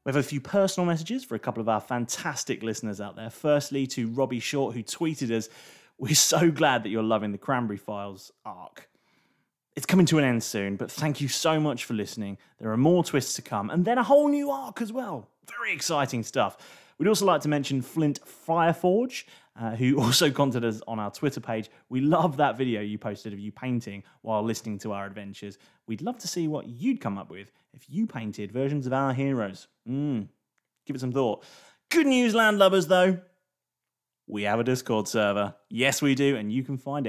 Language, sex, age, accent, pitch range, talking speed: English, male, 30-49, British, 115-165 Hz, 210 wpm